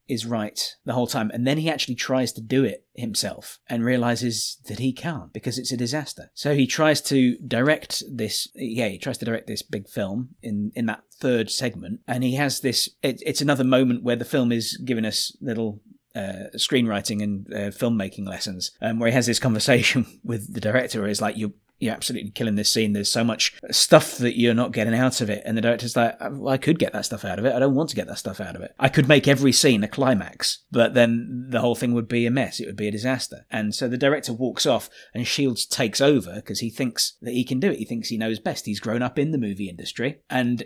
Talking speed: 240 wpm